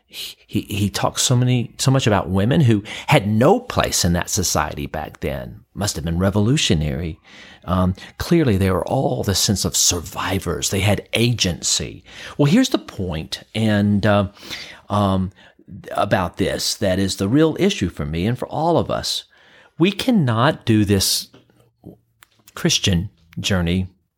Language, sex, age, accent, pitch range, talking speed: English, male, 40-59, American, 95-120 Hz, 155 wpm